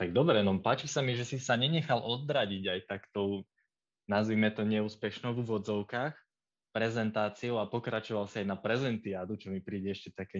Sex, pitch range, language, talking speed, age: male, 100-120 Hz, Slovak, 175 wpm, 20-39